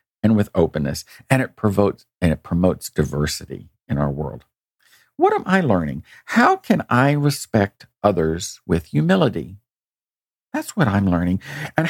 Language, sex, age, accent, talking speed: English, male, 50-69, American, 135 wpm